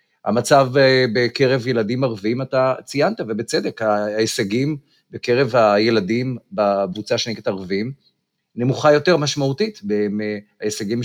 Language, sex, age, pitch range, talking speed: Hebrew, male, 50-69, 110-150 Hz, 90 wpm